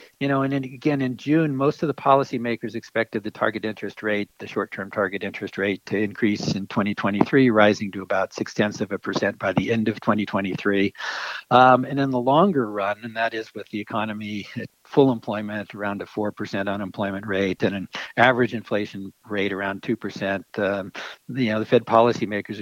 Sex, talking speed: male, 190 wpm